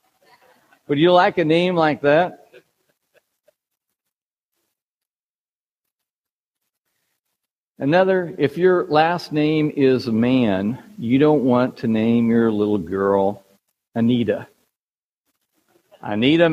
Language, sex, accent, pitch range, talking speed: English, male, American, 155-230 Hz, 85 wpm